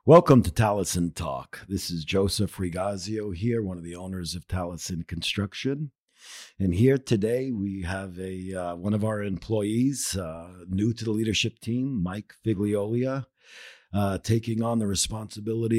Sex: male